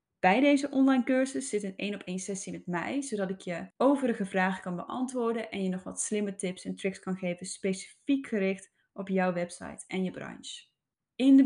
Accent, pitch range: Dutch, 185-245 Hz